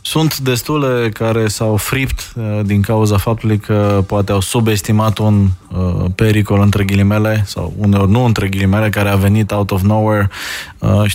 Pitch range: 100-120 Hz